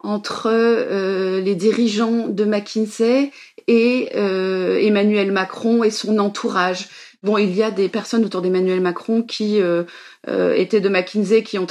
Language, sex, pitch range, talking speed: French, female, 195-235 Hz, 155 wpm